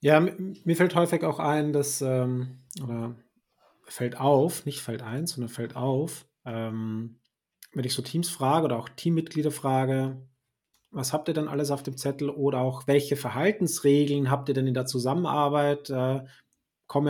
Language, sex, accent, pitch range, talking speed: German, male, German, 135-170 Hz, 165 wpm